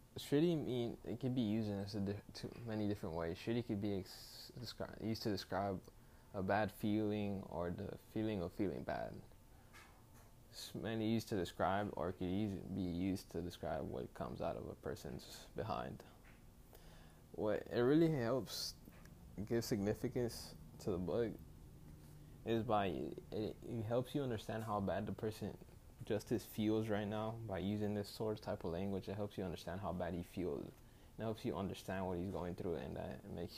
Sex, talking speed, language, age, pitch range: male, 175 wpm, English, 10-29, 95-115 Hz